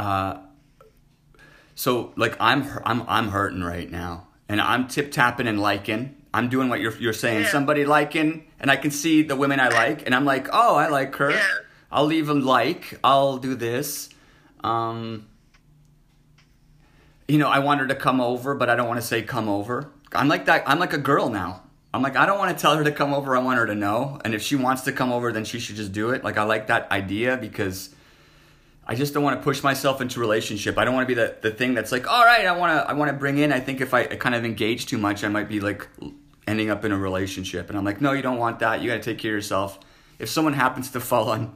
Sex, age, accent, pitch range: male, 30-49, American, 105-145 Hz